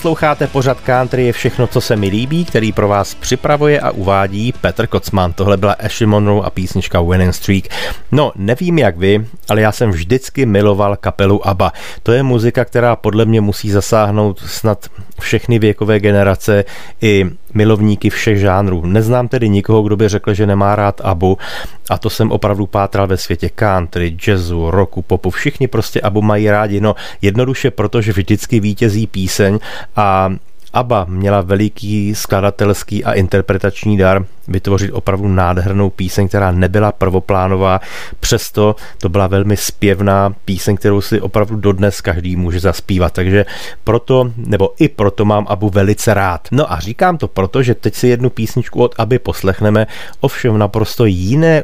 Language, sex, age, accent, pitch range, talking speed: Czech, male, 30-49, native, 95-110 Hz, 160 wpm